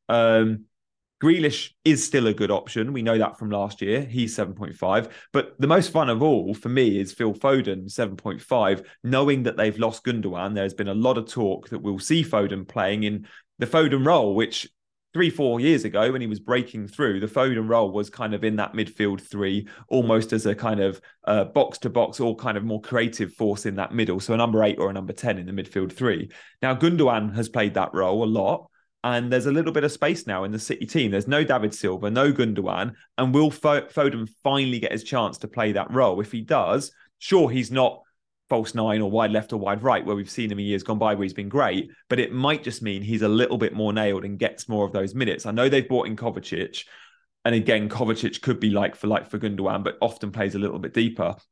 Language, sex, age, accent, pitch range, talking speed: English, male, 30-49, British, 100-125 Hz, 235 wpm